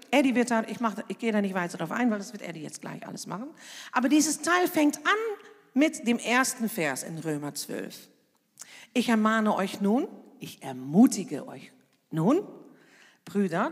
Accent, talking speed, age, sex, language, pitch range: German, 175 wpm, 50-69, female, German, 205-310 Hz